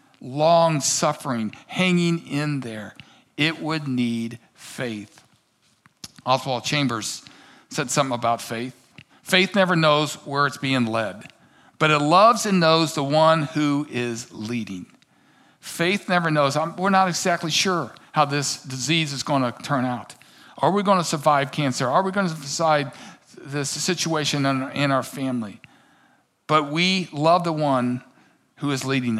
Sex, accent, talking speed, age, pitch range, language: male, American, 145 wpm, 50-69, 135-180 Hz, English